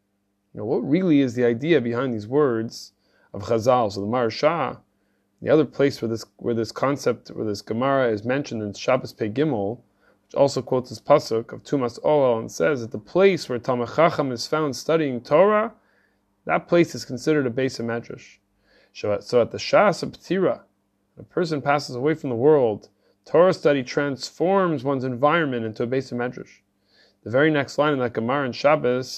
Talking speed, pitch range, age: 185 wpm, 110-150 Hz, 30-49